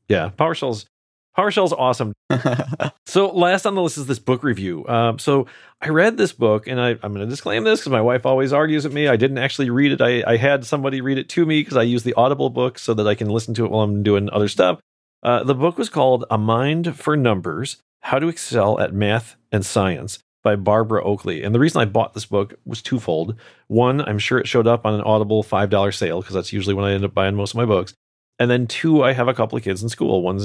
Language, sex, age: English, male, 40-59